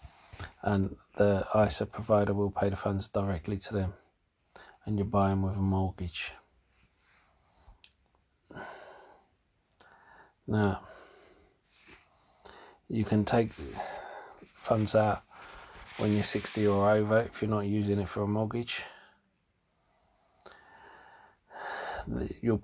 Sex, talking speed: male, 100 wpm